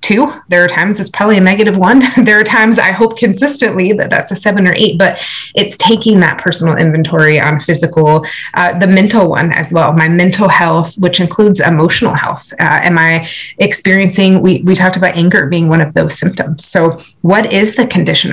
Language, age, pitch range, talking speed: English, 30-49, 165-190 Hz, 195 wpm